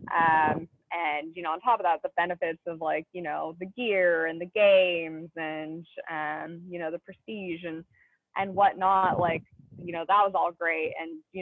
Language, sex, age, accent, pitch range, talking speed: English, female, 20-39, American, 165-190 Hz, 195 wpm